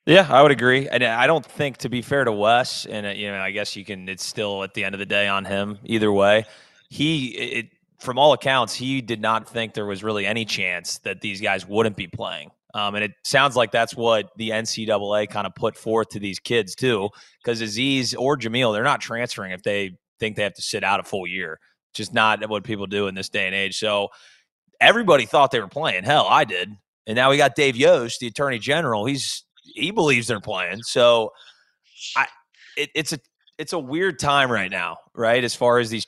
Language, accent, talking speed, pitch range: English, American, 225 wpm, 105-125 Hz